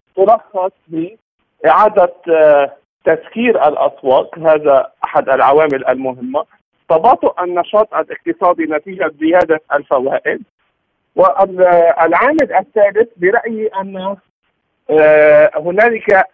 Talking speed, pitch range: 70 wpm, 160-215 Hz